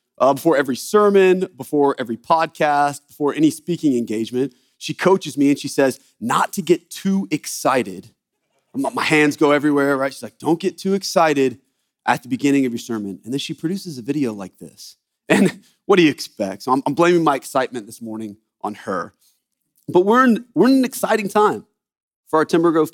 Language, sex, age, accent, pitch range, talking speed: English, male, 30-49, American, 120-170 Hz, 190 wpm